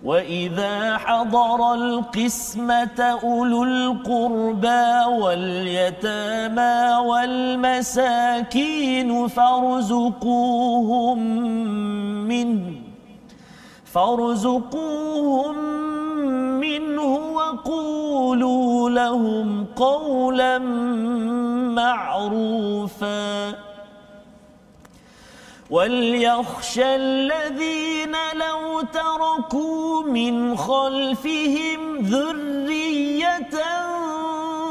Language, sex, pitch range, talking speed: Malayalam, male, 240-305 Hz, 40 wpm